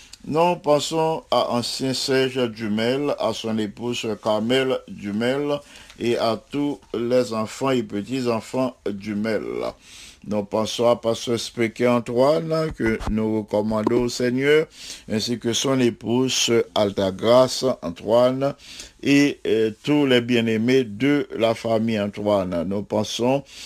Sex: male